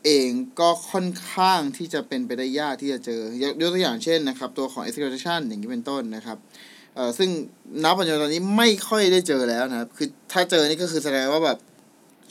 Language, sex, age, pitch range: Thai, male, 20-39, 135-180 Hz